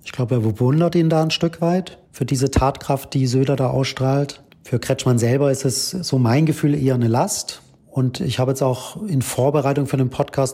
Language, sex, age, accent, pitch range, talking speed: German, male, 40-59, German, 120-140 Hz, 210 wpm